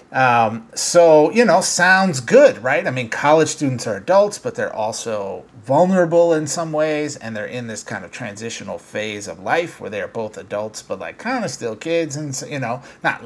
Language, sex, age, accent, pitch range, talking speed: English, male, 30-49, American, 115-155 Hz, 205 wpm